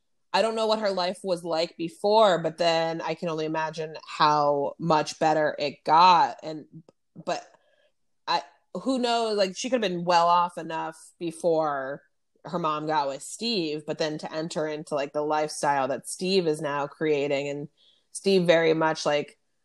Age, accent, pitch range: 20-39, American, 150-185 Hz